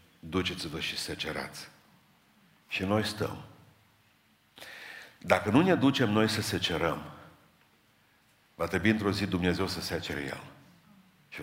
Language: Romanian